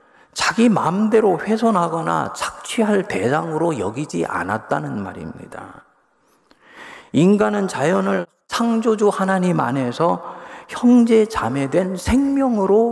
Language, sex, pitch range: Korean, male, 135-210 Hz